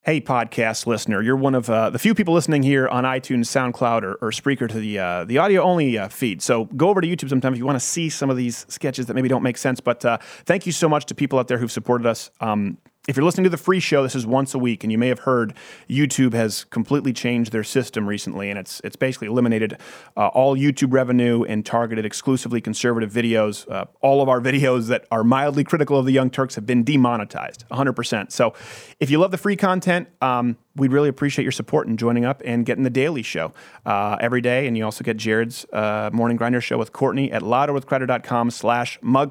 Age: 30-49